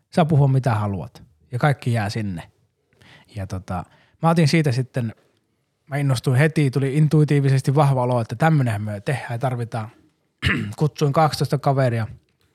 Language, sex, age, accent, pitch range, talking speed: Finnish, male, 20-39, native, 110-145 Hz, 135 wpm